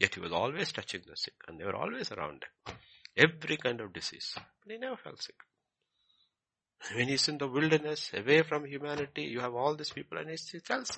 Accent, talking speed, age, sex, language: Indian, 210 wpm, 60-79, male, English